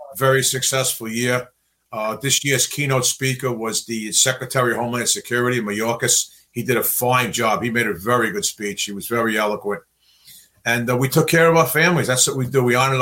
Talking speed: 205 wpm